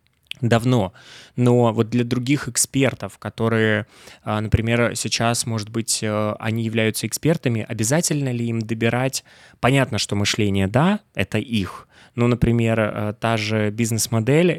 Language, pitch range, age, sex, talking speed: Russian, 105-125 Hz, 20-39, male, 120 wpm